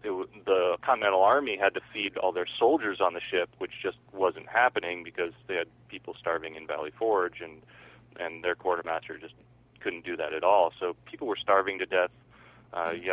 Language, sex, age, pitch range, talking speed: English, male, 30-49, 90-115 Hz, 195 wpm